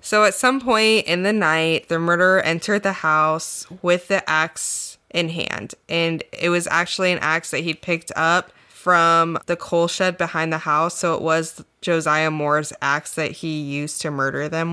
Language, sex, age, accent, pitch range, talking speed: English, female, 20-39, American, 160-185 Hz, 185 wpm